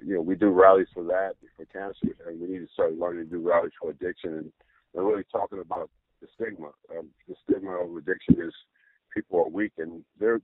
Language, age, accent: English, 50-69, American